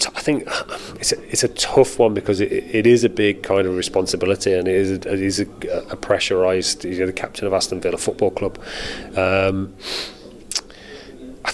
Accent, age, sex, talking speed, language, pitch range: British, 30-49, male, 200 wpm, English, 95-105 Hz